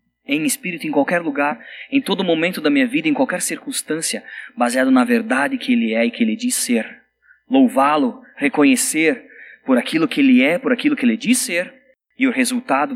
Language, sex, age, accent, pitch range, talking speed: Portuguese, male, 20-39, Brazilian, 185-265 Hz, 190 wpm